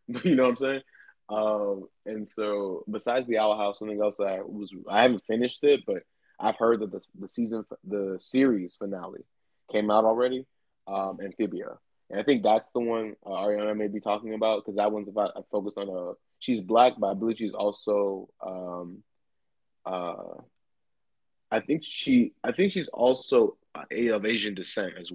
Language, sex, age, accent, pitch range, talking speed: English, male, 20-39, American, 100-115 Hz, 180 wpm